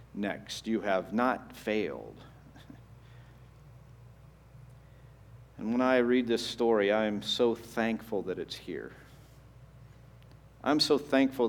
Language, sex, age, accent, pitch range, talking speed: English, male, 50-69, American, 110-130 Hz, 110 wpm